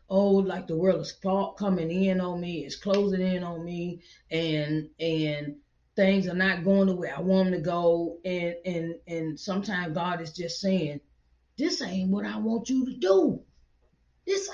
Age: 30-49